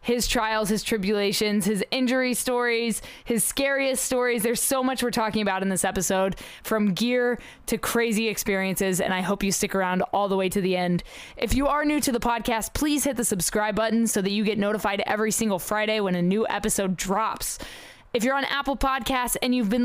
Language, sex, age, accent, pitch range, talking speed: English, female, 20-39, American, 200-240 Hz, 210 wpm